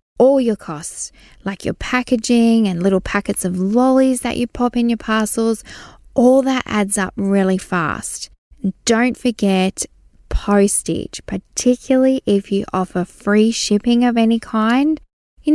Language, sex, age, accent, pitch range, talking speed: English, female, 10-29, Australian, 185-230 Hz, 140 wpm